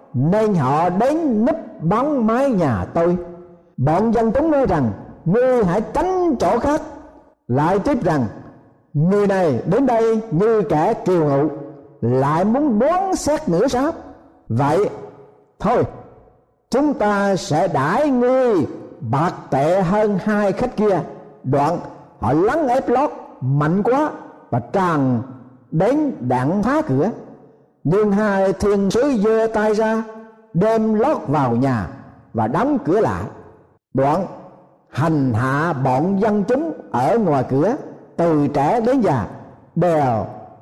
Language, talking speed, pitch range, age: Vietnamese, 135 wpm, 145-230 Hz, 60-79